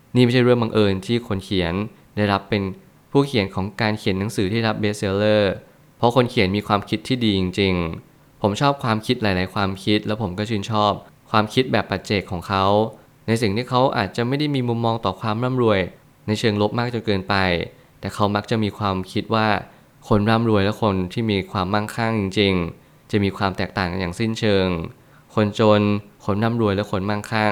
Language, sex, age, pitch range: Thai, male, 20-39, 100-115 Hz